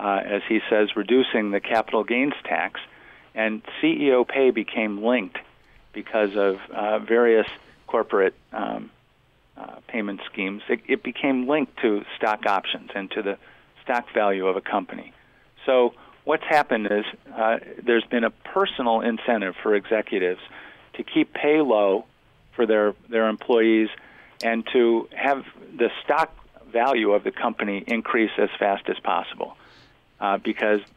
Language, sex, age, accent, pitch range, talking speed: English, male, 50-69, American, 105-125 Hz, 145 wpm